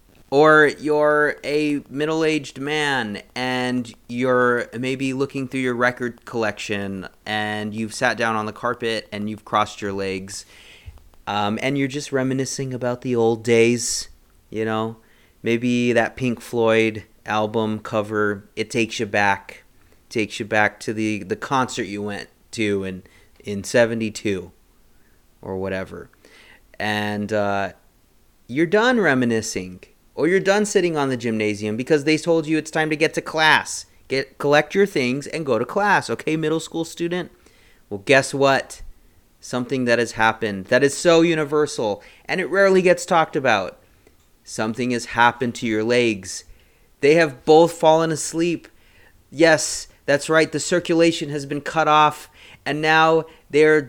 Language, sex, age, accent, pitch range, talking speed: English, male, 30-49, American, 105-150 Hz, 150 wpm